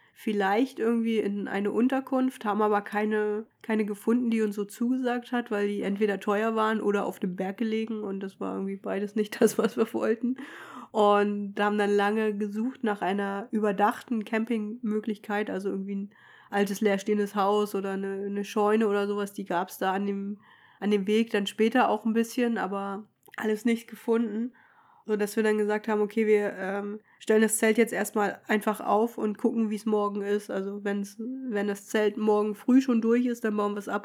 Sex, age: female, 20-39